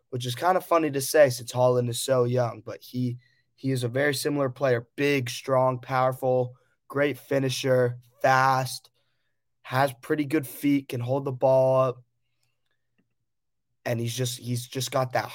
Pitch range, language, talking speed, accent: 120-130 Hz, English, 165 wpm, American